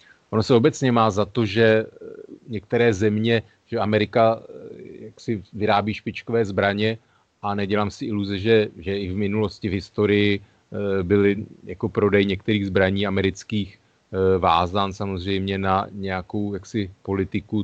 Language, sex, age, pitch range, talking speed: Slovak, male, 30-49, 95-105 Hz, 130 wpm